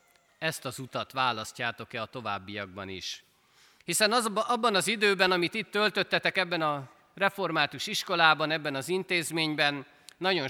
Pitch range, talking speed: 115-170 Hz, 125 wpm